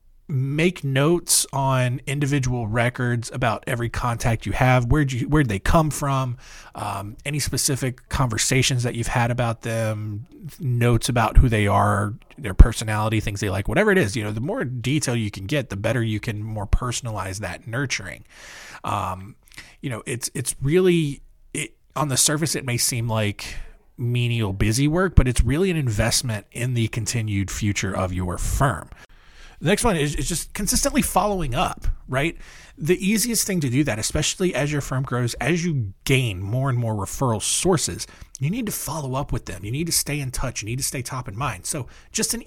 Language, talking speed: English, 190 wpm